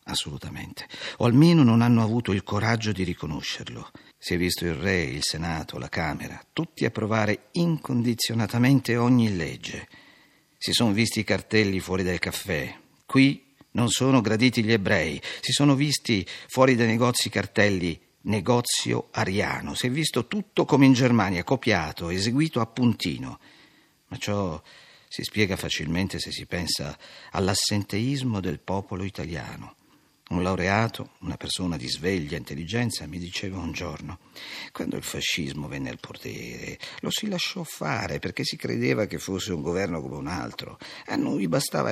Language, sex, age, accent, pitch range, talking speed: Italian, male, 50-69, native, 90-125 Hz, 150 wpm